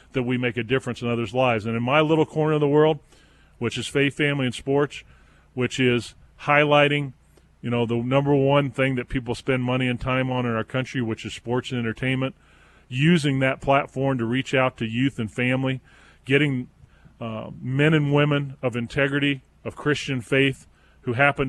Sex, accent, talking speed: male, American, 190 wpm